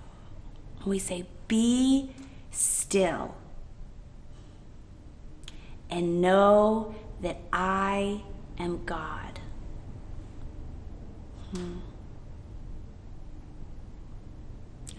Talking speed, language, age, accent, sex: 45 wpm, English, 30-49, American, female